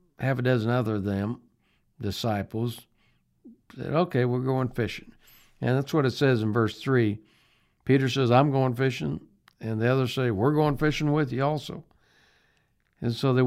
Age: 60-79